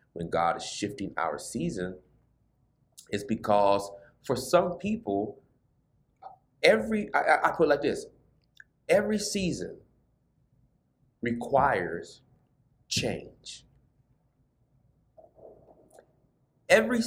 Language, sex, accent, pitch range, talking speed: English, male, American, 115-145 Hz, 80 wpm